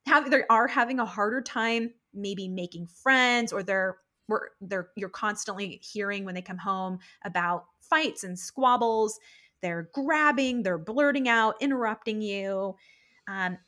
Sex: female